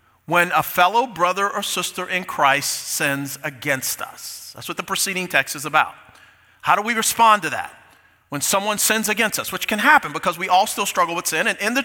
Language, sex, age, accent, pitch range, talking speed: English, male, 40-59, American, 145-195 Hz, 215 wpm